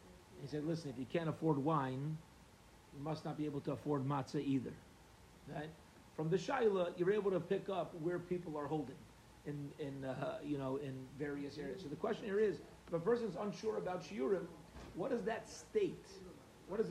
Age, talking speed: 40-59, 200 wpm